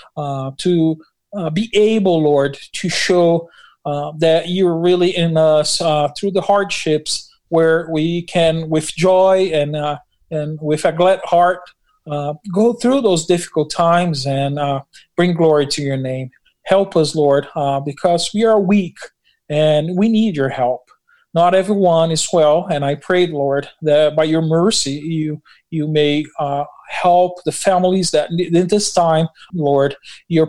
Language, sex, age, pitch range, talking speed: English, male, 40-59, 150-180 Hz, 160 wpm